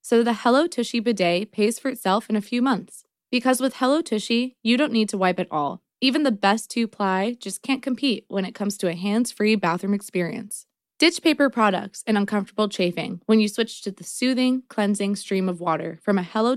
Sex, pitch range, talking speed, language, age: female, 195-245 Hz, 205 wpm, English, 20-39